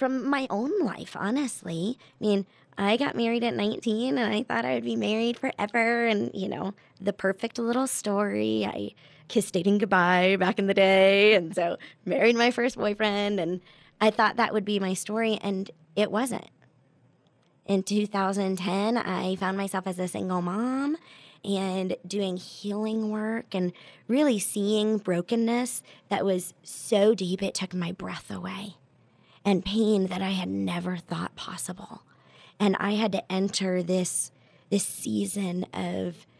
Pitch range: 180-215 Hz